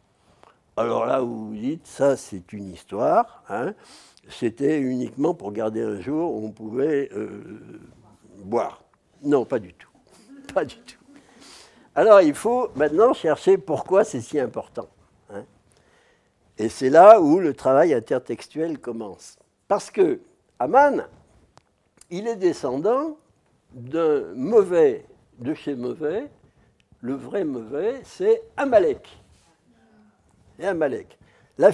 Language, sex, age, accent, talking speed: French, male, 60-79, French, 125 wpm